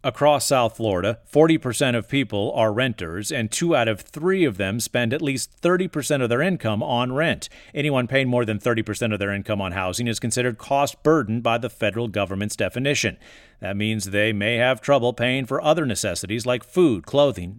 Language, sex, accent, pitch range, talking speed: English, male, American, 110-140 Hz, 190 wpm